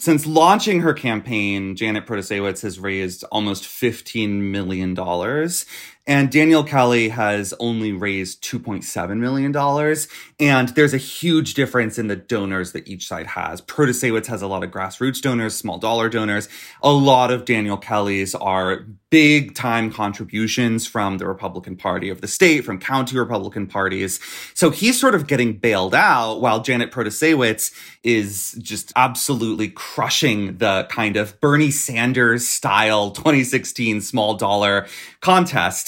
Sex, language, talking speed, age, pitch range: male, English, 135 wpm, 30-49, 105-145 Hz